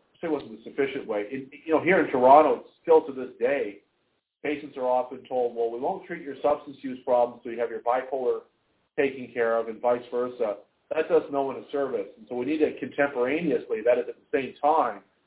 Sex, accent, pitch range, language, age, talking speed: male, American, 120-155 Hz, English, 40-59, 220 wpm